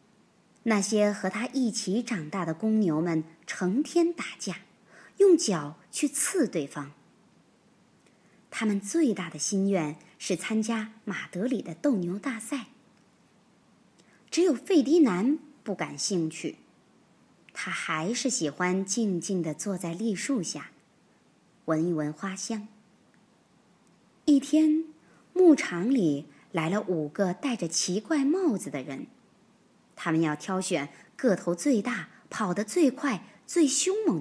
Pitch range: 180-270 Hz